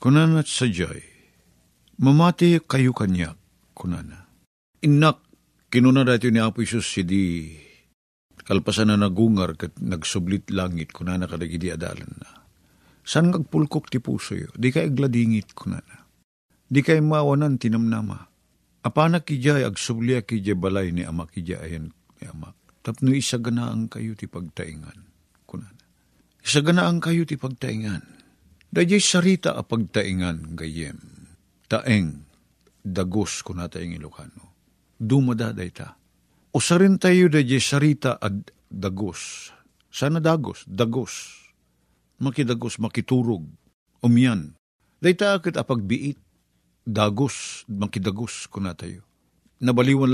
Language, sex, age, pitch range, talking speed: Filipino, male, 50-69, 90-140 Hz, 115 wpm